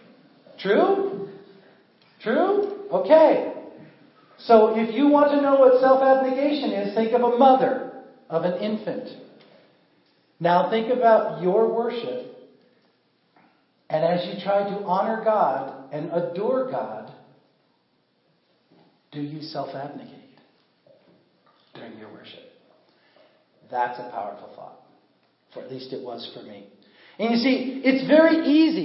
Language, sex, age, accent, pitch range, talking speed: English, male, 50-69, American, 175-255 Hz, 120 wpm